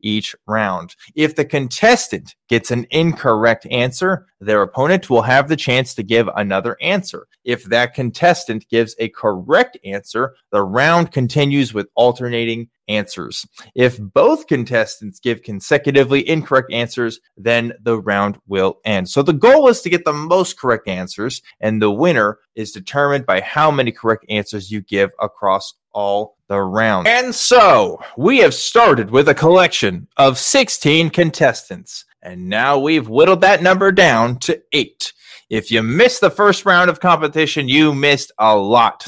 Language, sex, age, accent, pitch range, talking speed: English, male, 20-39, American, 110-150 Hz, 155 wpm